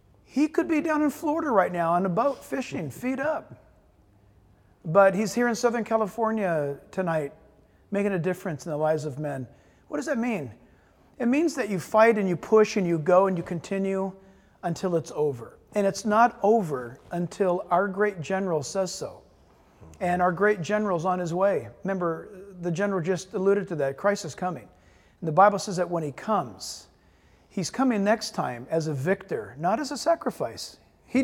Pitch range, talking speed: 165-220 Hz, 185 wpm